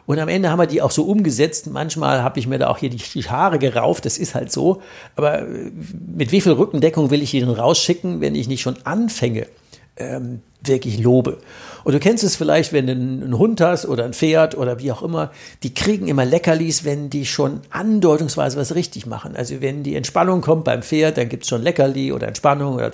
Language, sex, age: German, male, 60-79